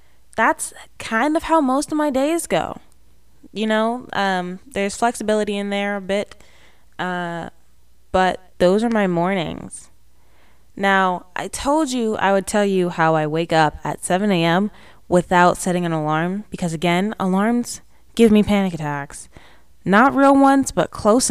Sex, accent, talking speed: female, American, 155 wpm